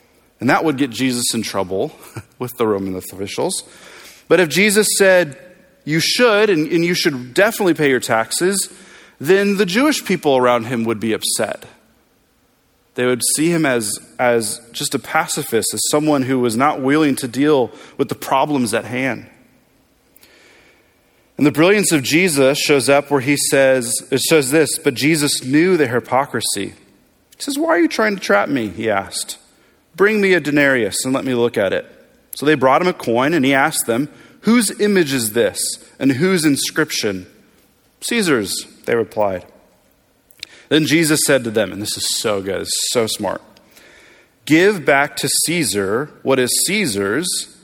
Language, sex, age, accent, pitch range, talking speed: English, male, 30-49, American, 125-180 Hz, 170 wpm